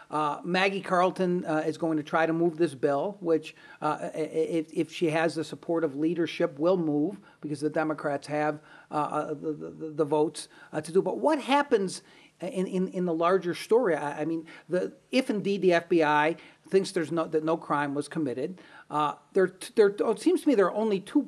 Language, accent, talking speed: English, American, 205 wpm